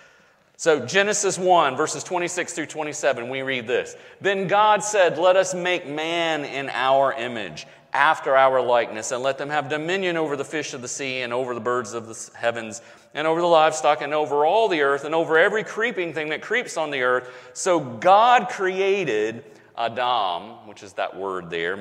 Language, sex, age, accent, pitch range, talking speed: English, male, 40-59, American, 125-175 Hz, 190 wpm